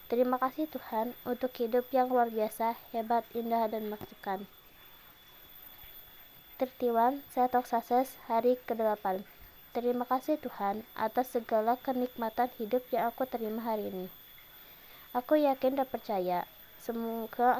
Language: Indonesian